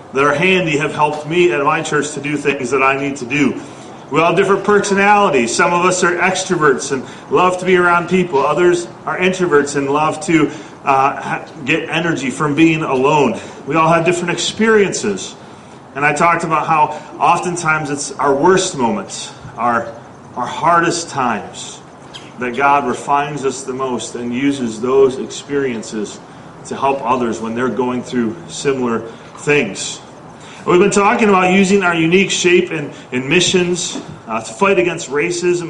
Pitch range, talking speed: 145-180 Hz, 165 wpm